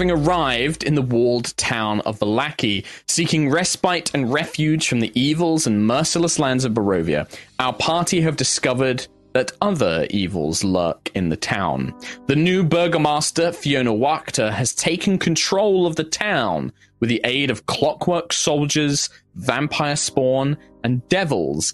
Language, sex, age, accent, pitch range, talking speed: English, male, 20-39, British, 110-160 Hz, 145 wpm